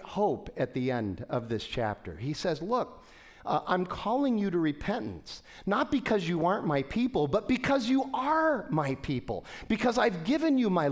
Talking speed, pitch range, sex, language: 180 wpm, 135-205 Hz, male, English